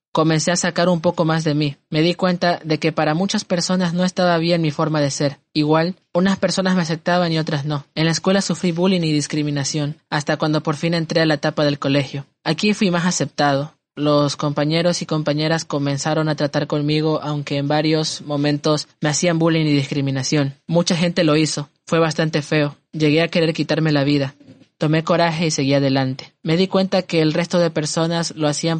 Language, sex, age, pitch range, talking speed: Spanish, male, 20-39, 150-170 Hz, 200 wpm